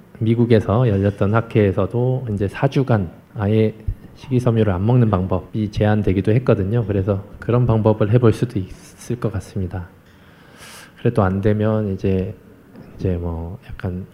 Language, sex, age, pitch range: Korean, male, 20-39, 100-120 Hz